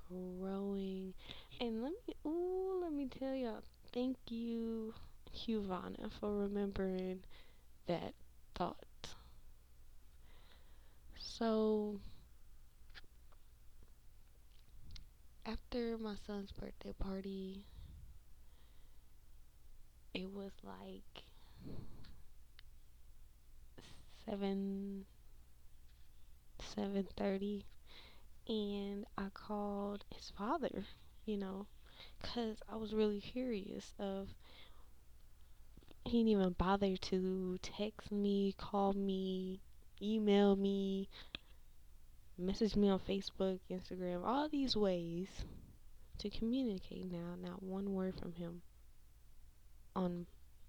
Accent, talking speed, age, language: American, 80 wpm, 20-39, English